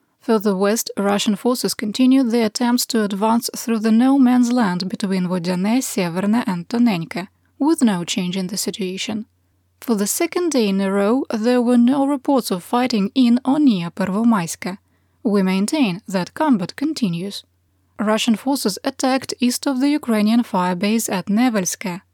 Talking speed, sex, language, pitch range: 150 wpm, female, English, 190-245 Hz